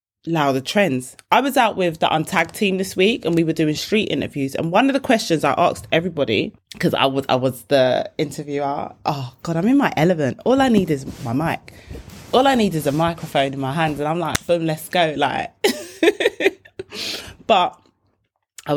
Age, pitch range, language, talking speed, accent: 20-39, 155-215 Hz, English, 200 wpm, British